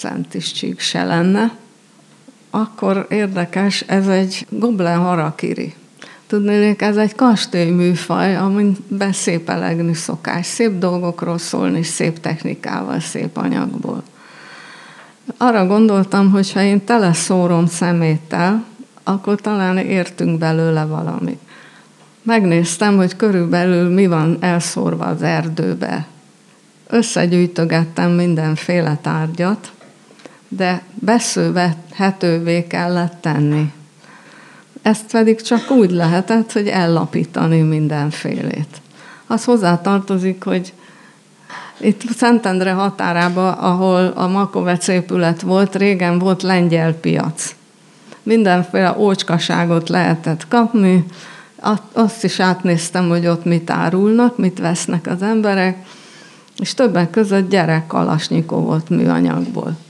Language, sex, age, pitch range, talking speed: Hungarian, female, 50-69, 170-210 Hz, 100 wpm